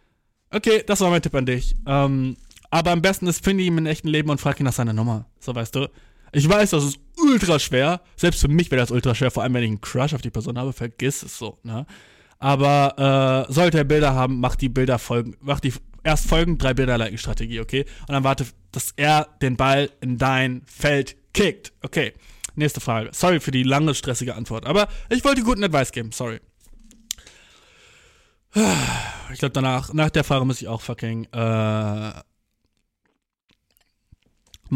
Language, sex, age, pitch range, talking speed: German, male, 20-39, 120-155 Hz, 185 wpm